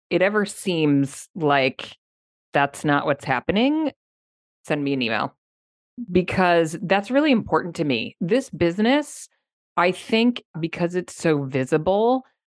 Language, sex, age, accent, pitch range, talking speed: English, female, 30-49, American, 140-185 Hz, 125 wpm